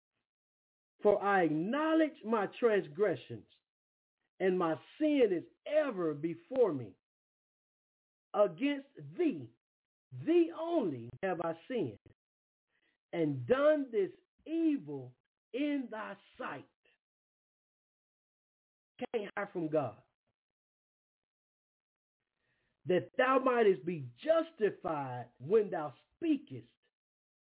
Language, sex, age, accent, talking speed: English, male, 50-69, American, 85 wpm